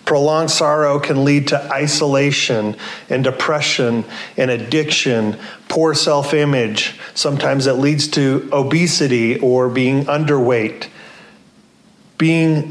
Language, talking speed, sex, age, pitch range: English, 100 wpm, male, 30-49, 125-150 Hz